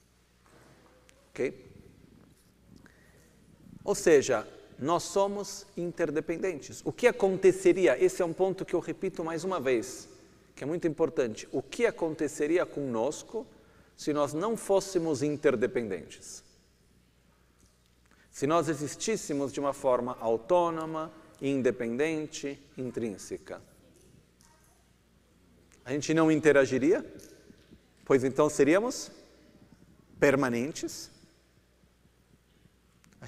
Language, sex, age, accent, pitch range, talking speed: Italian, male, 40-59, Brazilian, 120-190 Hz, 90 wpm